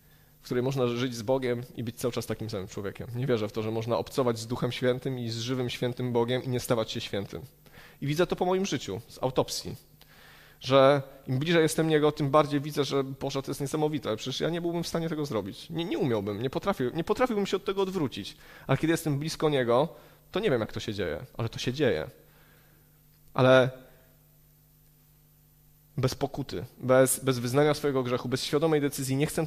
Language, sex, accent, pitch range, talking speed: Polish, male, native, 130-170 Hz, 210 wpm